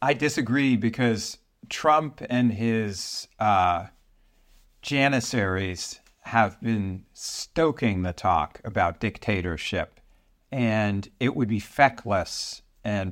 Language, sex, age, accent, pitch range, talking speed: English, male, 50-69, American, 100-120 Hz, 95 wpm